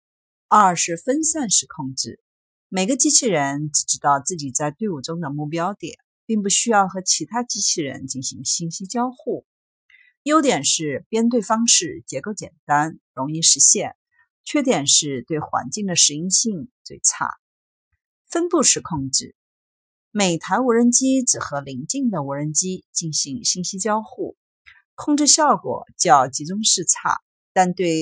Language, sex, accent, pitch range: Chinese, female, native, 150-245 Hz